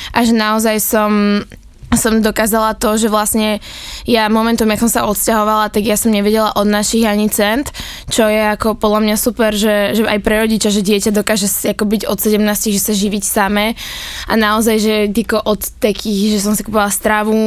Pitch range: 205-225 Hz